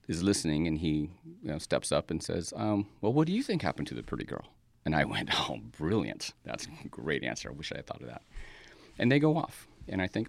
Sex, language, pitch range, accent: male, English, 80-120 Hz, American